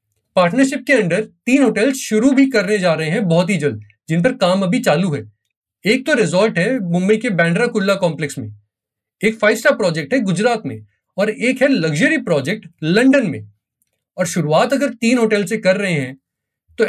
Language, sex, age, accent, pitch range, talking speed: Hindi, male, 30-49, native, 155-230 Hz, 190 wpm